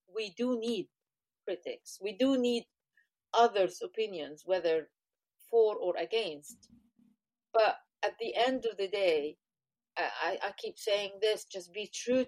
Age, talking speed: 40-59, 135 wpm